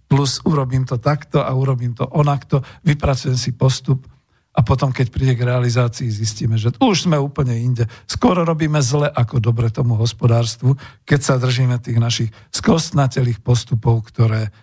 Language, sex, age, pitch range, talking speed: Slovak, male, 50-69, 120-150 Hz, 155 wpm